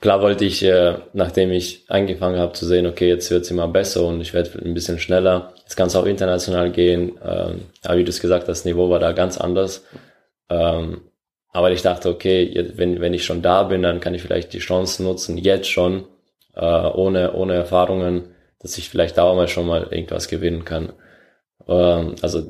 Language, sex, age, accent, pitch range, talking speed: German, male, 20-39, German, 85-95 Hz, 205 wpm